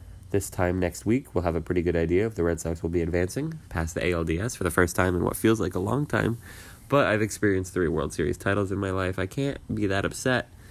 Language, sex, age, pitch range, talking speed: English, male, 20-39, 90-115 Hz, 260 wpm